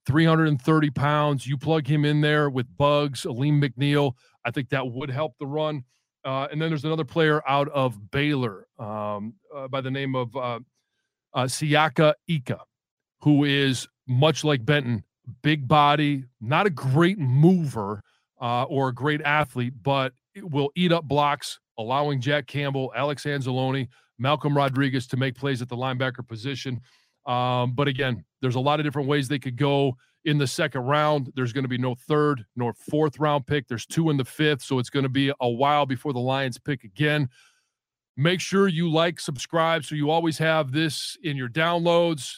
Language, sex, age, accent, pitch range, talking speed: English, male, 40-59, American, 130-155 Hz, 180 wpm